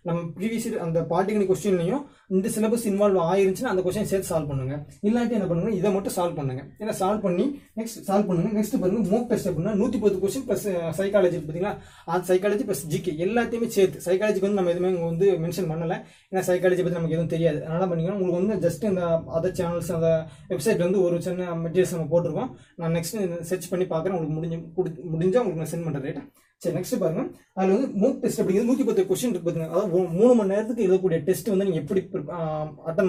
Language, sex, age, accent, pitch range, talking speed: Tamil, male, 20-39, native, 170-205 Hz, 170 wpm